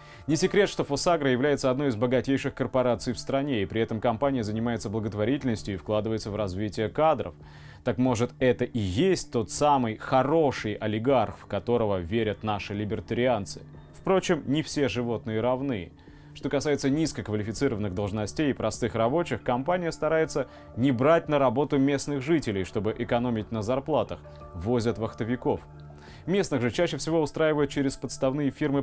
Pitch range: 110-140 Hz